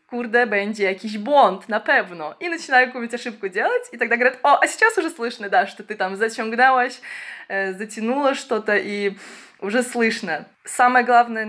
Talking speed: 160 wpm